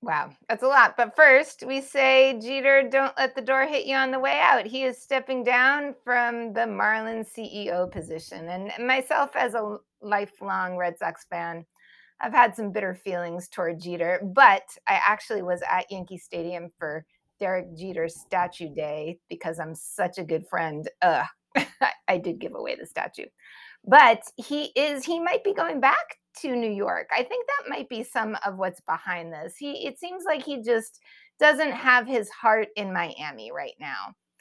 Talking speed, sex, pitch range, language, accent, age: 180 wpm, female, 185-270 Hz, English, American, 30-49